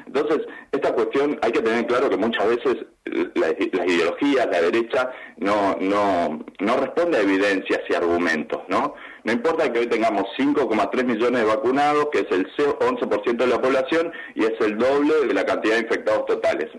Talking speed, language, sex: 180 wpm, Spanish, male